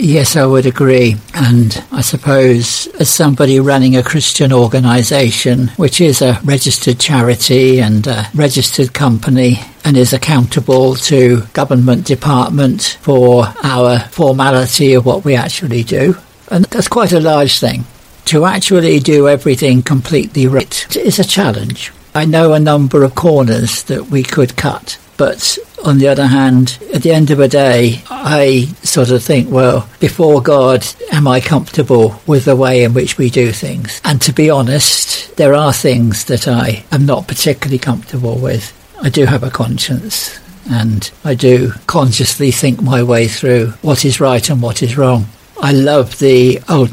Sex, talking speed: male, 165 wpm